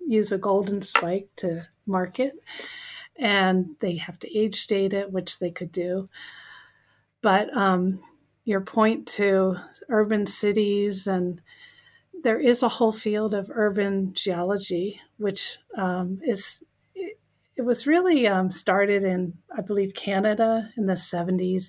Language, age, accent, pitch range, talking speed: English, 40-59, American, 190-225 Hz, 140 wpm